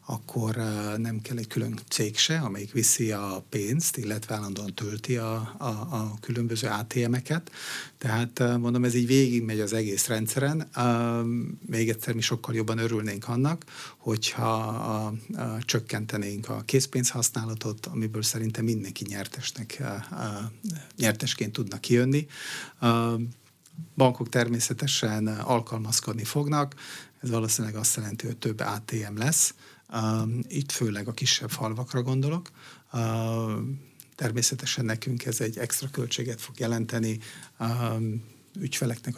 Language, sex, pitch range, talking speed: Hungarian, male, 110-130 Hz, 120 wpm